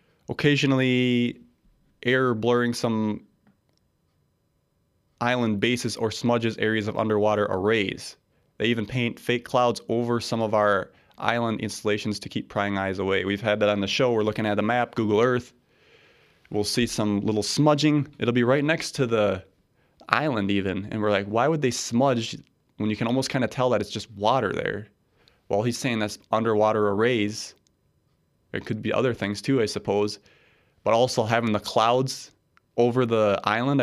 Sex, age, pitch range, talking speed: male, 20-39, 105-125 Hz, 170 wpm